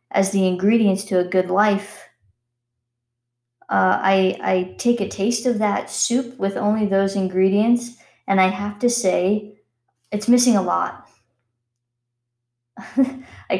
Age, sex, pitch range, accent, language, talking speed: 20-39, female, 130-205 Hz, American, English, 130 wpm